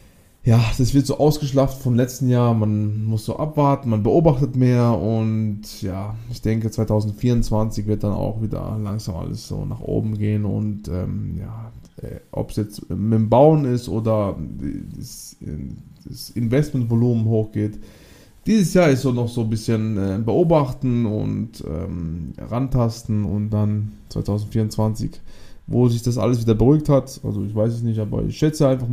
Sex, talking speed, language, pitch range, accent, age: male, 160 wpm, German, 110-140 Hz, German, 20-39